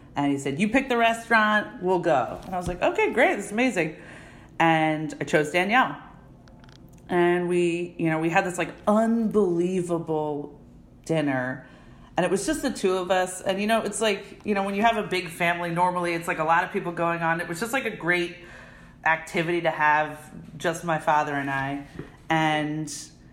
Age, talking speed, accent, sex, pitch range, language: 40-59, 195 wpm, American, female, 160-210 Hz, English